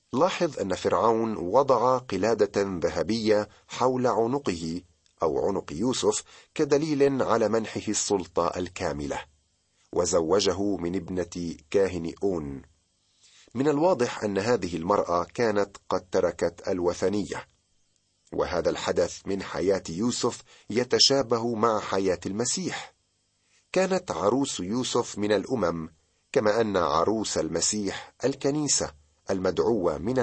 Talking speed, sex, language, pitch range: 100 wpm, male, Arabic, 85-125 Hz